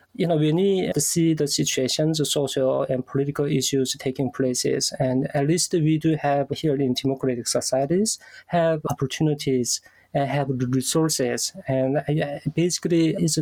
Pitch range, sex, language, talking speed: 135-160 Hz, male, English, 150 wpm